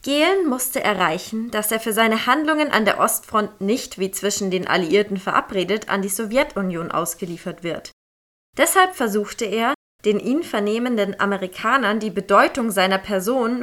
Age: 20-39